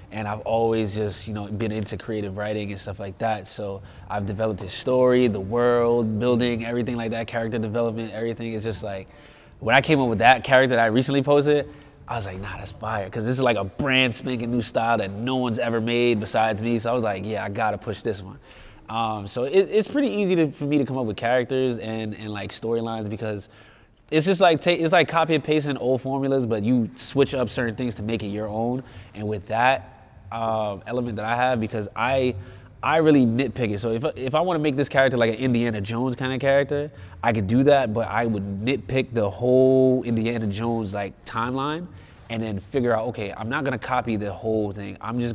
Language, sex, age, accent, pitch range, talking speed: English, male, 20-39, American, 105-130 Hz, 230 wpm